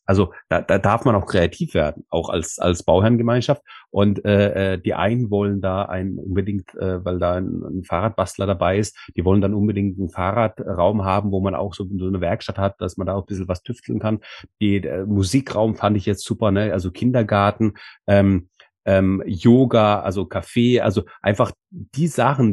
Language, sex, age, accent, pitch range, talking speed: German, male, 30-49, German, 95-120 Hz, 185 wpm